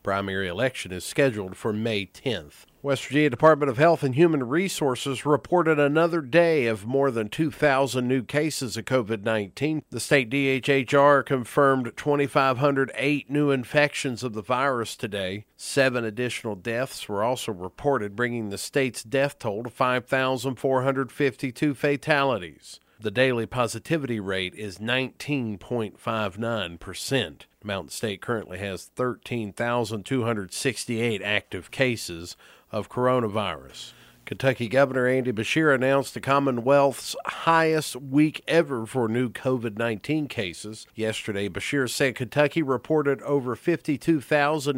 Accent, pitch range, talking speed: American, 115-145 Hz, 115 wpm